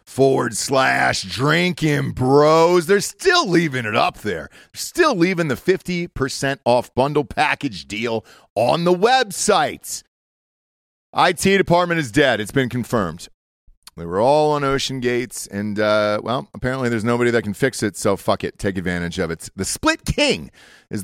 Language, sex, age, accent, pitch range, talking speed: English, male, 40-59, American, 115-175 Hz, 155 wpm